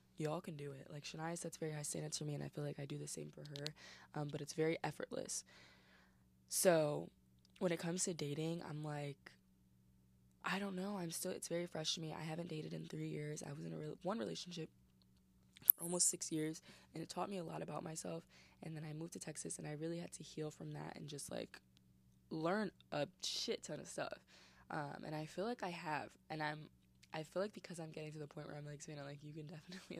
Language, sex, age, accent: English, female, 20-39, American